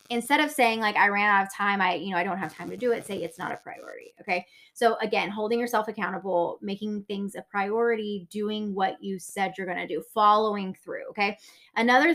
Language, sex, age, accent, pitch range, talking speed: English, female, 20-39, American, 195-255 Hz, 225 wpm